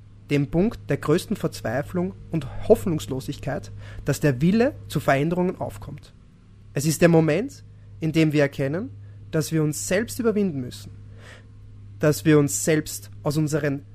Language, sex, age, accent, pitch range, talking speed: German, male, 30-49, German, 105-170 Hz, 140 wpm